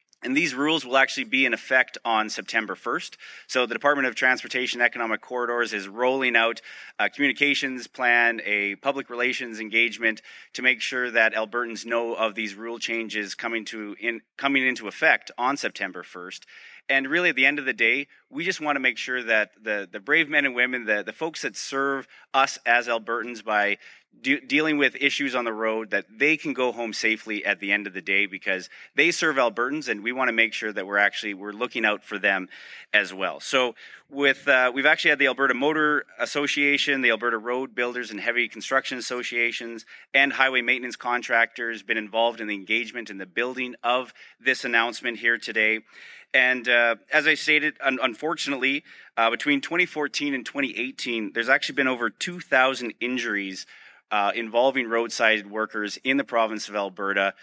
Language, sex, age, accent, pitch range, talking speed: English, male, 30-49, American, 110-135 Hz, 185 wpm